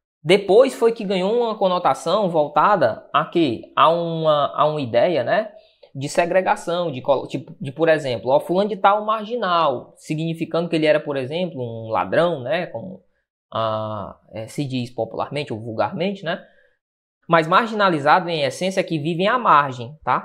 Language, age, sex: Portuguese, 20-39, female